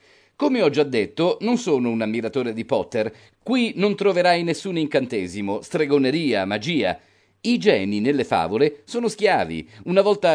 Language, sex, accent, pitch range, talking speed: Italian, male, native, 135-210 Hz, 145 wpm